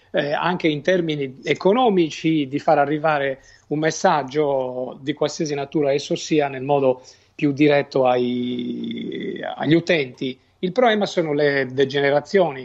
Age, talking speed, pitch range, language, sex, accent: 40-59, 125 wpm, 145-180 Hz, Italian, male, native